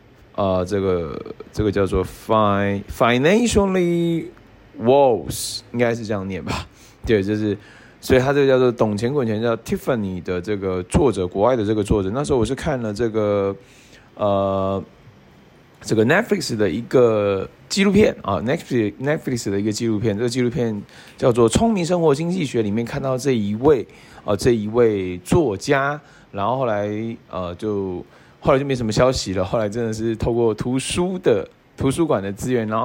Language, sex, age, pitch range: Chinese, male, 20-39, 105-135 Hz